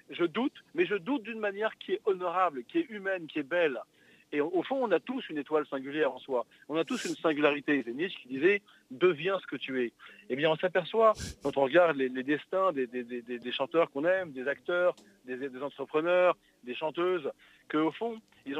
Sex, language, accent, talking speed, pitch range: male, French, French, 215 wpm, 145-200 Hz